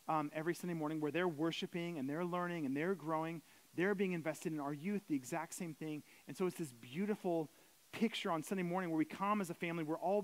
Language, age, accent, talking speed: English, 30-49, American, 235 wpm